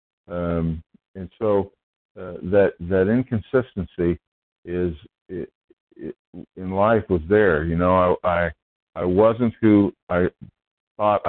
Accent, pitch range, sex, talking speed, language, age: American, 80-95 Hz, male, 120 wpm, English, 50-69